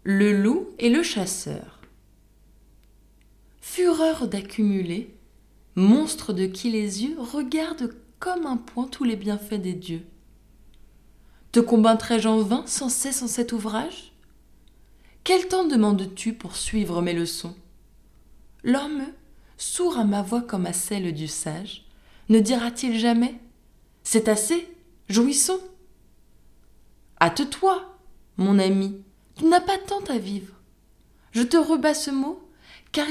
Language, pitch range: French, 190-295 Hz